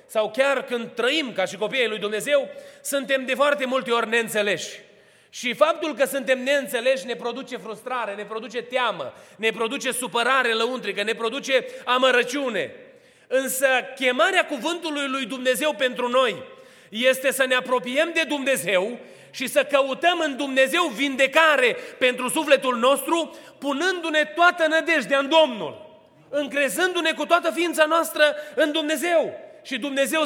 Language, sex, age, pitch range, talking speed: Romanian, male, 30-49, 230-285 Hz, 135 wpm